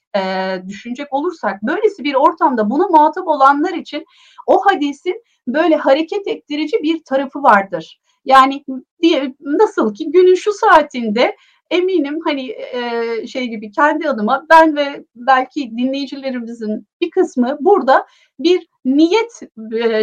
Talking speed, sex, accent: 115 wpm, female, native